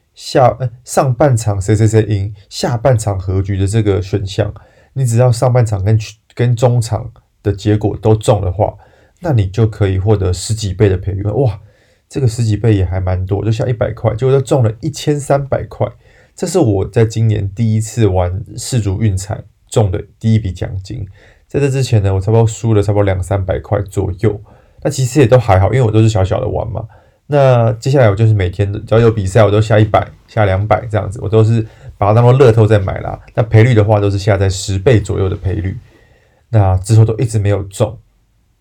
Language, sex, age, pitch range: Chinese, male, 20-39, 100-115 Hz